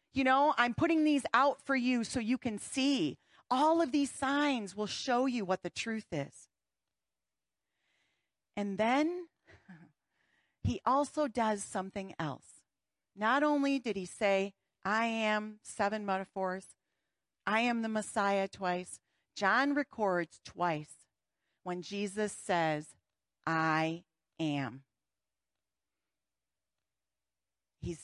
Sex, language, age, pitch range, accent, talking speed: female, English, 40-59, 175-245 Hz, American, 115 wpm